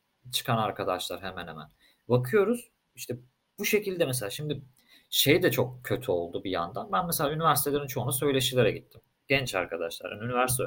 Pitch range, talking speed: 125-150 Hz, 145 wpm